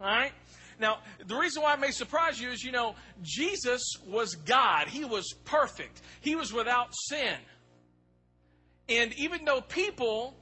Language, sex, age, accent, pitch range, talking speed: English, male, 40-59, American, 190-285 Hz, 155 wpm